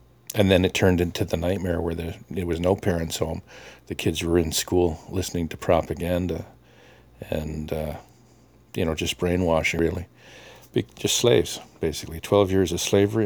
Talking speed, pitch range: 160 wpm, 75-90 Hz